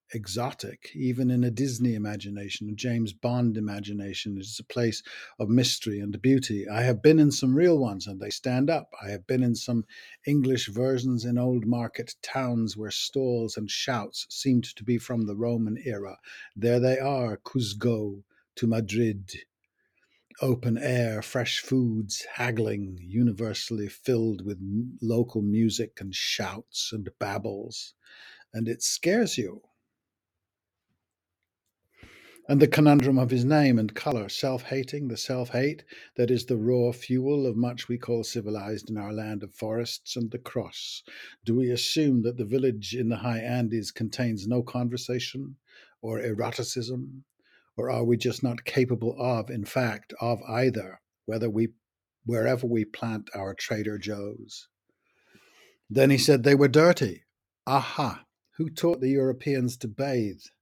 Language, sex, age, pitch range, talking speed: English, male, 50-69, 105-125 Hz, 150 wpm